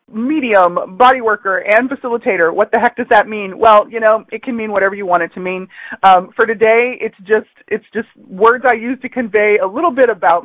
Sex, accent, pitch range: female, American, 175-250 Hz